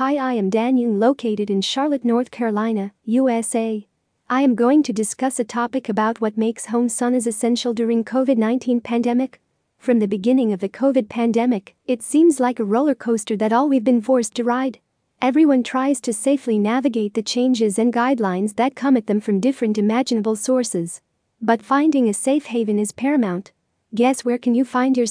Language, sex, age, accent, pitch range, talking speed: English, female, 40-59, American, 220-260 Hz, 180 wpm